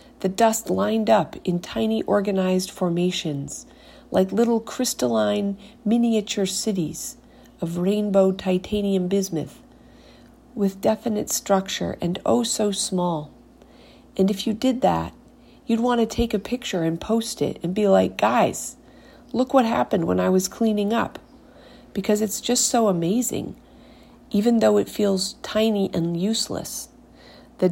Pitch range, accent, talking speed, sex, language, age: 170-215 Hz, American, 135 wpm, female, English, 50-69